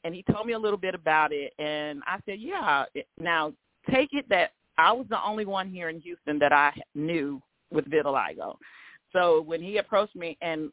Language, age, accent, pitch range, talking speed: English, 40-59, American, 160-195 Hz, 200 wpm